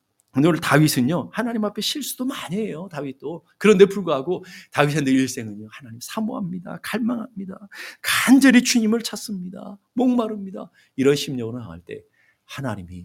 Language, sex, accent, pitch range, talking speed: English, male, Korean, 135-220 Hz, 110 wpm